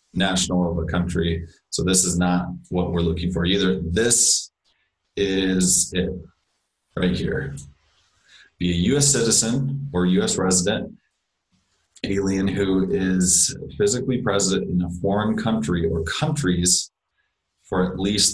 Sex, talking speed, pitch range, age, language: male, 130 wpm, 85-100 Hz, 30-49, English